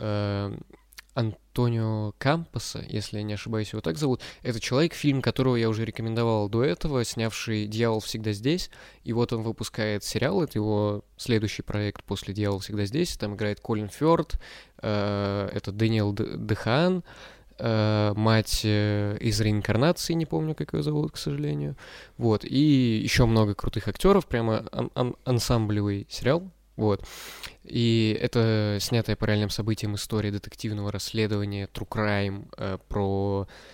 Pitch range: 100-115 Hz